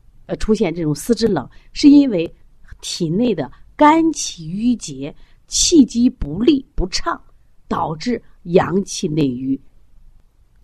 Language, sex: Chinese, female